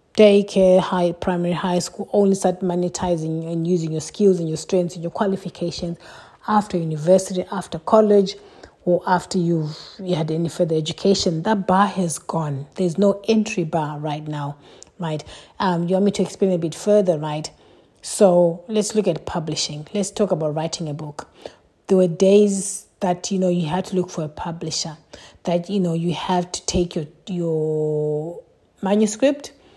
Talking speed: 170 wpm